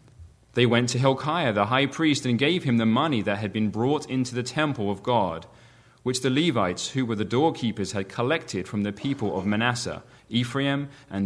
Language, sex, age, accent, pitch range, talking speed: English, male, 30-49, British, 100-130 Hz, 195 wpm